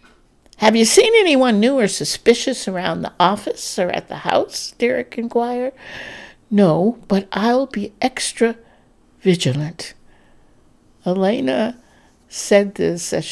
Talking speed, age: 115 wpm, 60-79